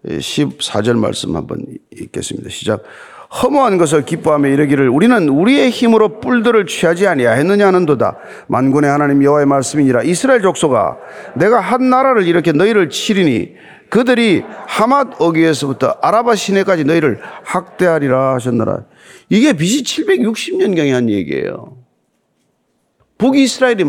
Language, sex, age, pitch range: Korean, male, 40-59, 145-235 Hz